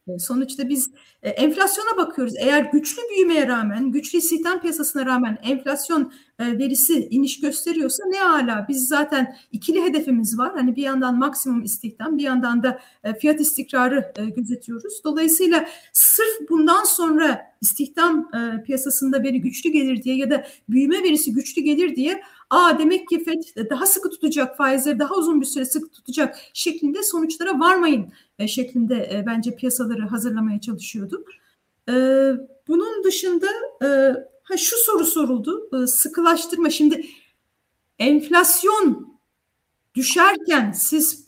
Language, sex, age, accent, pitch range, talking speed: Turkish, female, 40-59, native, 265-335 Hz, 120 wpm